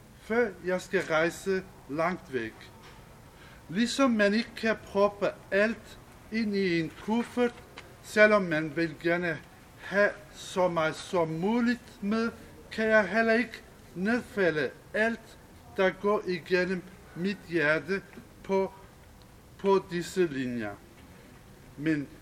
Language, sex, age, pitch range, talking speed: English, male, 60-79, 160-215 Hz, 110 wpm